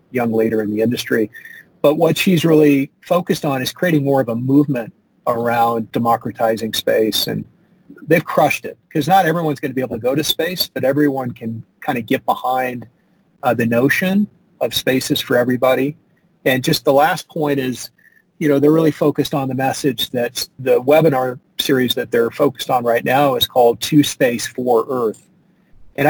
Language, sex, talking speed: English, male, 185 wpm